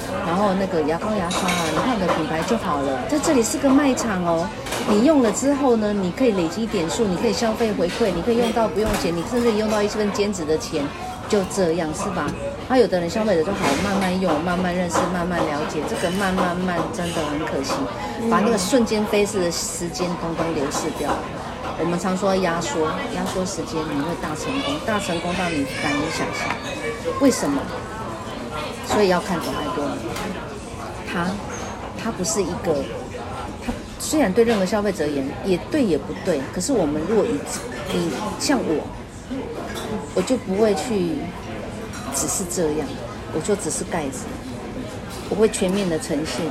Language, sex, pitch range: Chinese, female, 170-225 Hz